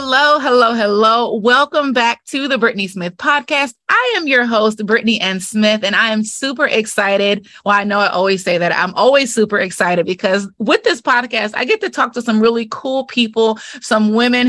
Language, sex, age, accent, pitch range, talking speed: English, female, 20-39, American, 195-245 Hz, 200 wpm